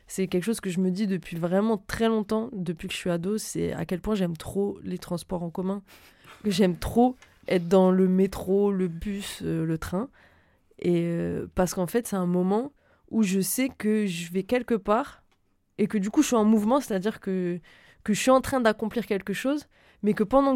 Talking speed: 215 wpm